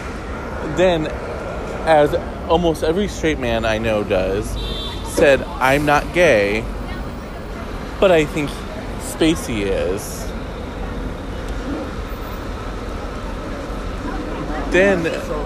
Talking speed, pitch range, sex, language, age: 75 wpm, 115-150 Hz, male, English, 20-39